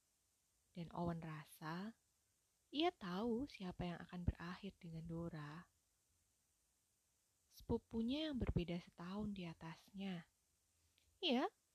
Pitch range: 160-235 Hz